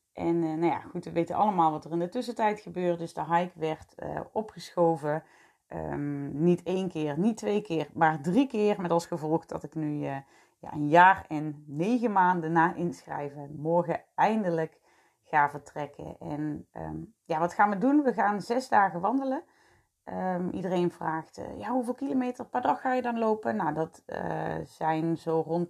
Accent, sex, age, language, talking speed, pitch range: Dutch, female, 30-49, Dutch, 185 wpm, 160-205 Hz